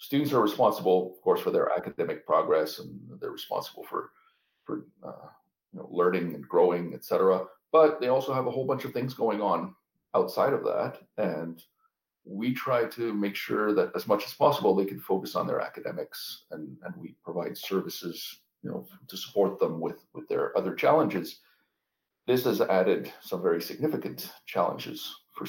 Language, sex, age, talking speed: English, male, 40-59, 170 wpm